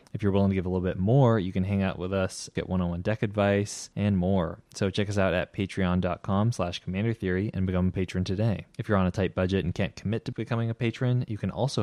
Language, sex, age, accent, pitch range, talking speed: English, male, 20-39, American, 90-105 Hz, 260 wpm